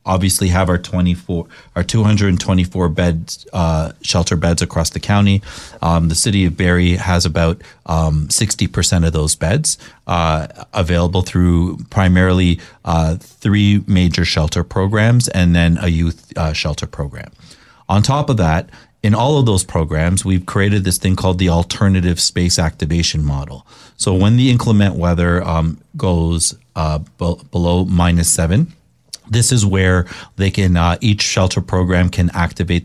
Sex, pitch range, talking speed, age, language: male, 85-100 Hz, 155 wpm, 30-49, English